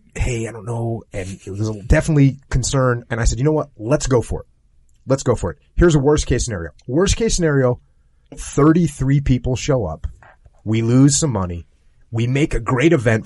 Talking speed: 200 wpm